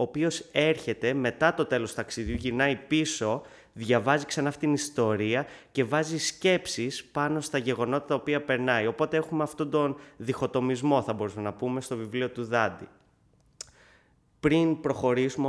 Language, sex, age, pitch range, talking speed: Greek, male, 20-39, 120-145 Hz, 145 wpm